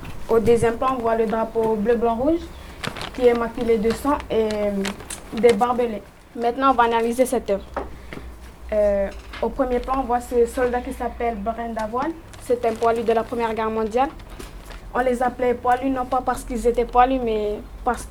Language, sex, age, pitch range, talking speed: French, female, 20-39, 225-250 Hz, 180 wpm